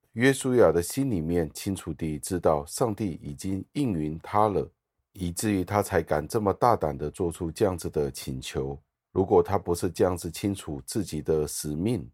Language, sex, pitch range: Chinese, male, 75-100 Hz